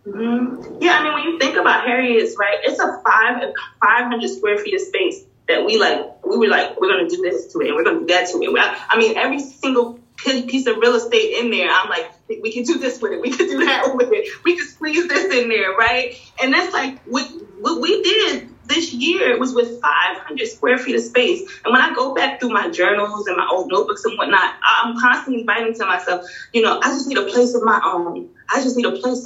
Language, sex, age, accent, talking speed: English, female, 20-39, American, 245 wpm